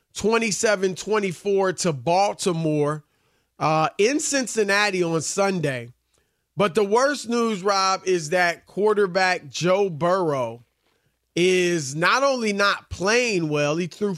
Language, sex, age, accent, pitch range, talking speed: English, male, 30-49, American, 160-210 Hz, 110 wpm